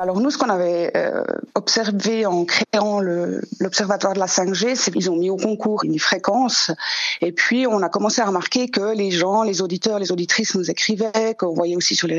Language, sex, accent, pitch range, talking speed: French, female, French, 180-225 Hz, 205 wpm